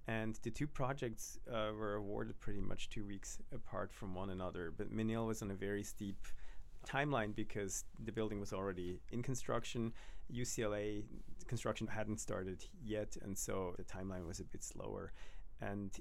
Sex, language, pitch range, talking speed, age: male, English, 90-110 Hz, 165 wpm, 30-49